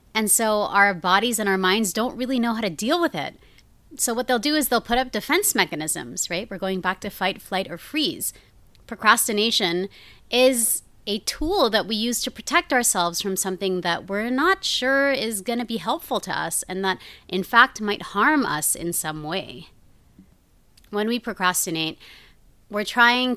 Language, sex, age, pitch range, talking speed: English, female, 30-49, 185-235 Hz, 180 wpm